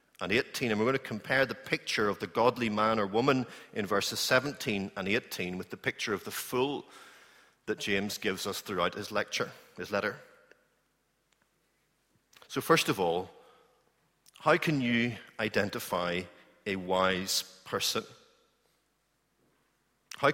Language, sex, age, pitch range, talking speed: English, male, 40-59, 100-135 Hz, 140 wpm